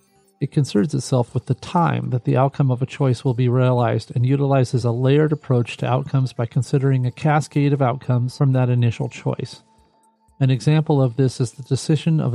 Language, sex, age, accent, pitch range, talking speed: English, male, 40-59, American, 125-145 Hz, 195 wpm